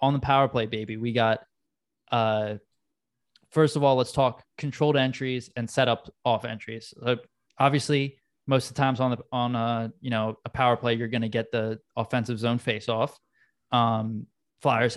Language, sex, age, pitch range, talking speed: English, male, 20-39, 115-140 Hz, 185 wpm